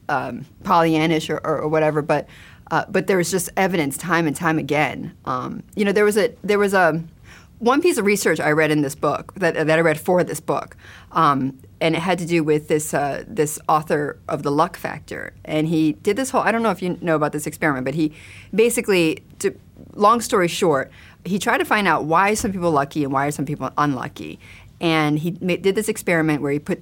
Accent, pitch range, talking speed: American, 150-190 Hz, 230 wpm